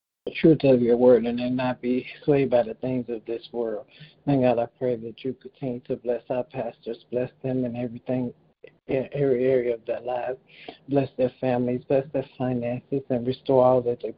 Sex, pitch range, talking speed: male, 125-140 Hz, 200 wpm